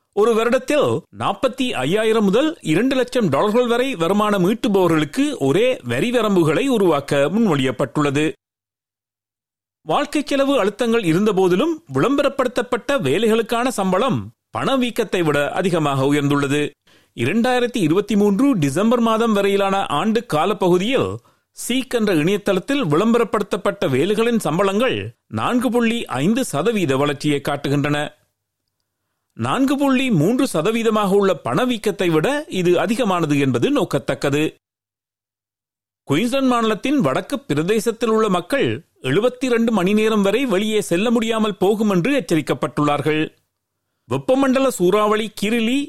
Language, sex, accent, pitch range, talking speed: Tamil, male, native, 160-240 Hz, 90 wpm